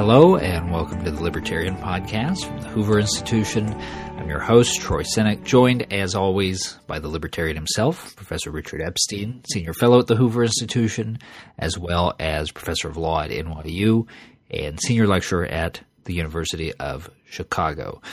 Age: 40-59